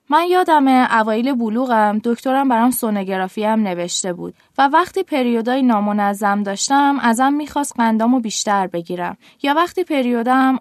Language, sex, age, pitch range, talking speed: Persian, female, 20-39, 210-280 Hz, 130 wpm